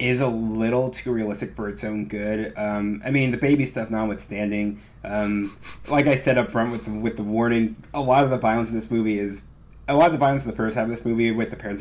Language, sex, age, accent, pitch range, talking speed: English, male, 30-49, American, 105-125 Hz, 260 wpm